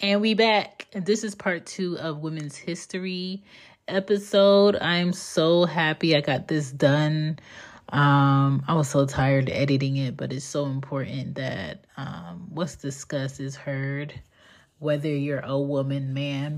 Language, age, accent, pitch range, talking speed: English, 30-49, American, 140-170 Hz, 145 wpm